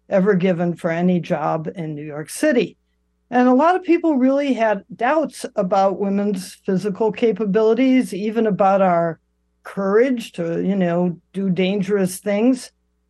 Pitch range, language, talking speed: 180-230 Hz, English, 140 wpm